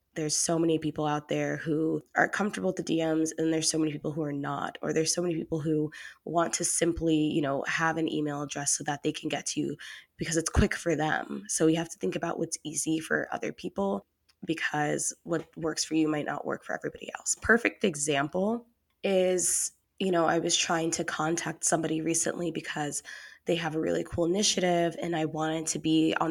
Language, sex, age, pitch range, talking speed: English, female, 20-39, 155-175 Hz, 215 wpm